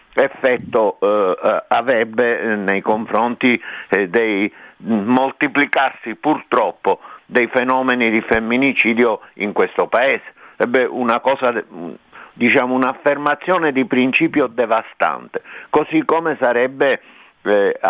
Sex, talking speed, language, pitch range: male, 95 wpm, Italian, 120-150 Hz